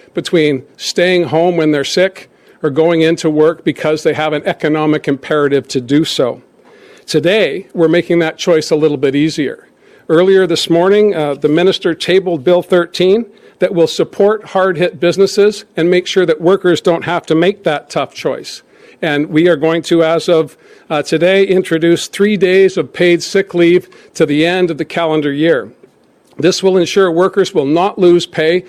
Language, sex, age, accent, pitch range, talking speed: English, male, 50-69, American, 155-185 Hz, 180 wpm